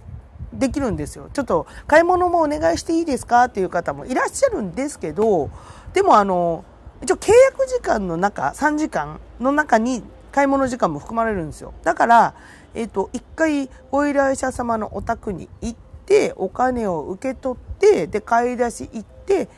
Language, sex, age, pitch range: Japanese, female, 40-59, 185-290 Hz